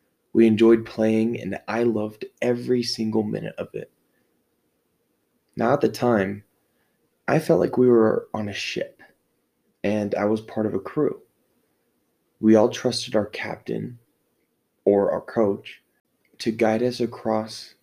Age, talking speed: 20-39, 140 wpm